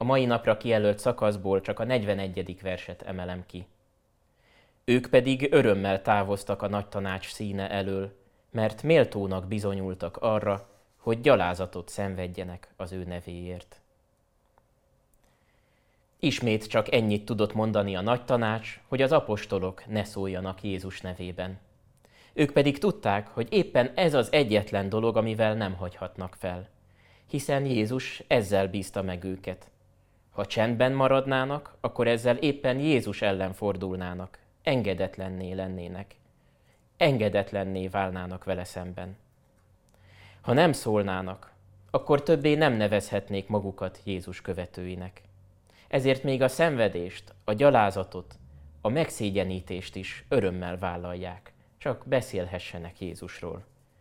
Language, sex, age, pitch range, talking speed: Hungarian, male, 20-39, 95-115 Hz, 115 wpm